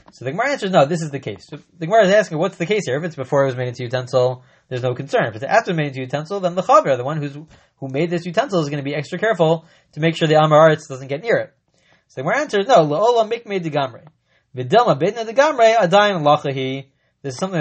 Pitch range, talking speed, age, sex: 140-185 Hz, 250 wpm, 20-39, male